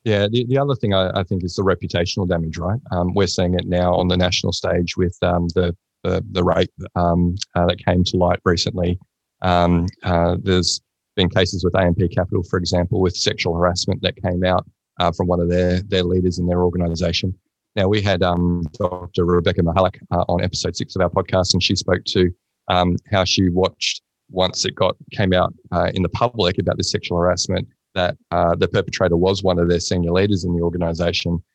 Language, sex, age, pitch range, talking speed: English, male, 20-39, 90-100 Hz, 205 wpm